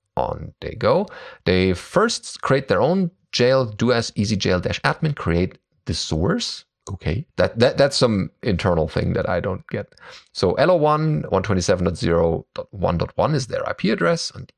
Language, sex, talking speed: English, male, 165 wpm